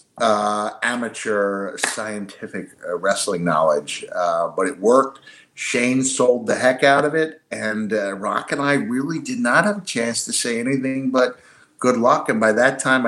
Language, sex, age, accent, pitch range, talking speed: English, male, 50-69, American, 100-140 Hz, 175 wpm